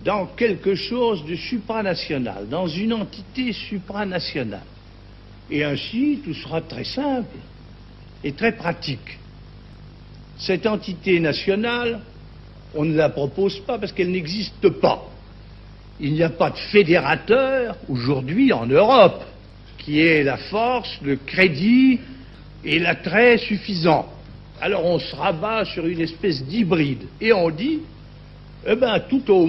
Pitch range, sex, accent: 135-215 Hz, male, French